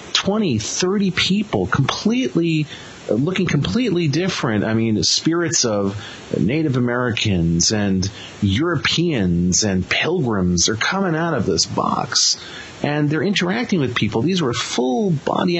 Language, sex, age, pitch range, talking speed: English, male, 40-59, 110-170 Hz, 130 wpm